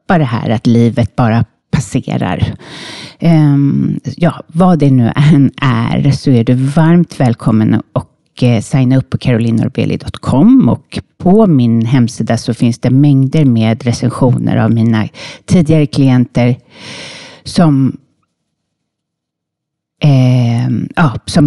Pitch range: 120-145 Hz